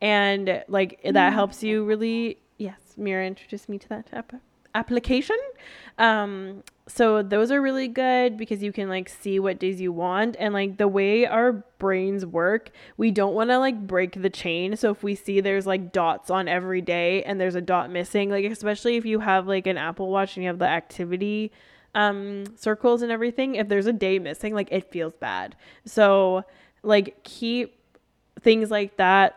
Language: English